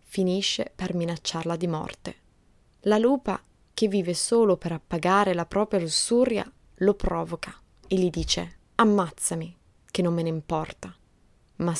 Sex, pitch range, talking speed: female, 170-215 Hz, 135 wpm